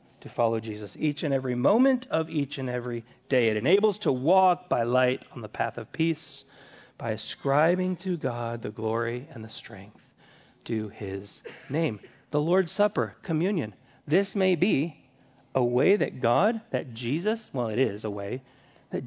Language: English